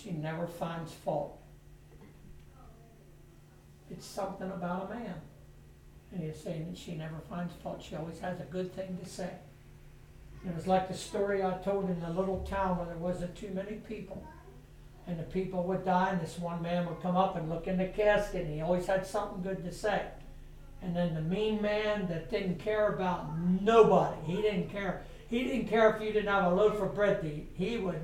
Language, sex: English, male